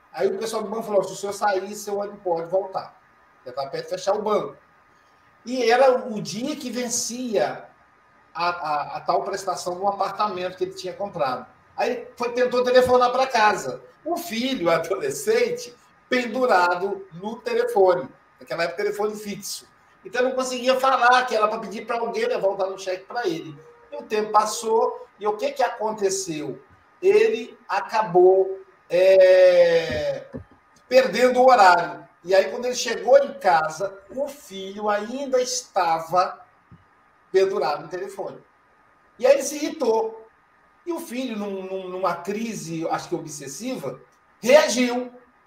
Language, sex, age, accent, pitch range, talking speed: Portuguese, male, 50-69, Brazilian, 190-260 Hz, 150 wpm